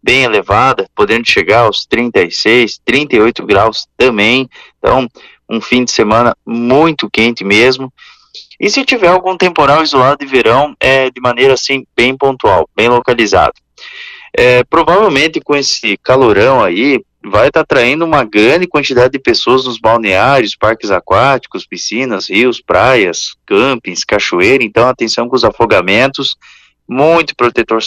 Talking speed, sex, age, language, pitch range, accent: 140 wpm, male, 20-39, Portuguese, 130-175 Hz, Brazilian